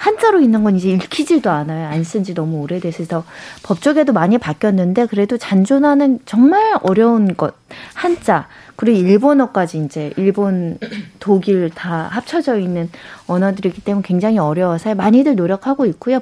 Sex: female